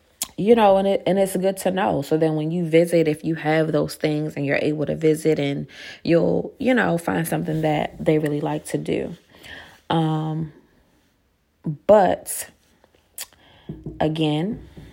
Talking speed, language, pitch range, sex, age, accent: 155 wpm, English, 150-170 Hz, female, 30-49, American